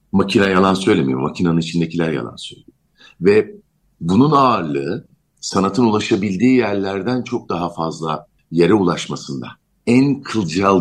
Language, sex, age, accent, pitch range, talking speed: Turkish, male, 50-69, native, 85-115 Hz, 110 wpm